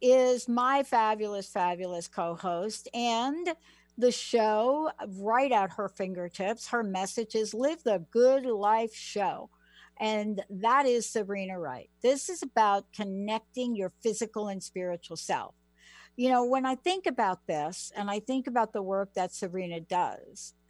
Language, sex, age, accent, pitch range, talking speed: English, female, 60-79, American, 185-245 Hz, 145 wpm